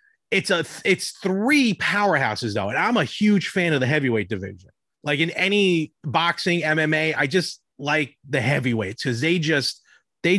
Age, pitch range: 30-49, 135-185 Hz